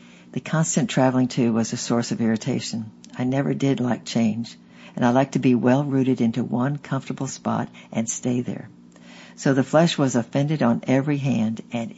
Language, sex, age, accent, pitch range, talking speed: English, female, 60-79, American, 120-140 Hz, 180 wpm